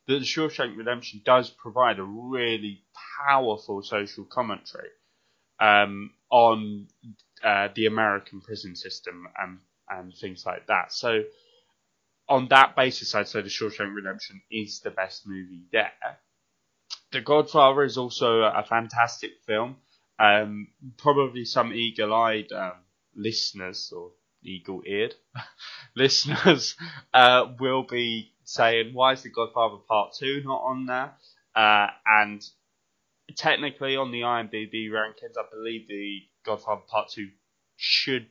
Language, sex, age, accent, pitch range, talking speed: English, male, 20-39, British, 100-125 Hz, 120 wpm